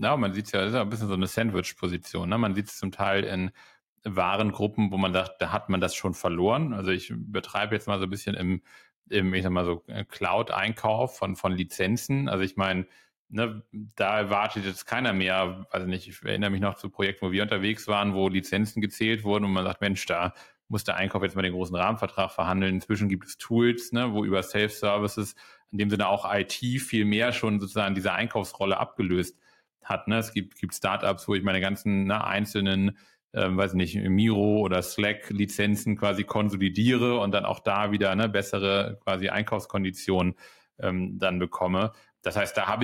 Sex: male